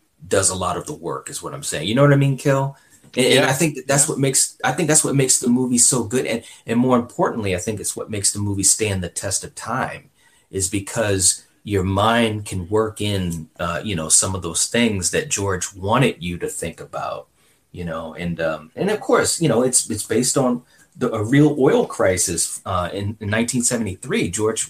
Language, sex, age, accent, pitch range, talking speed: English, male, 30-49, American, 95-120 Hz, 225 wpm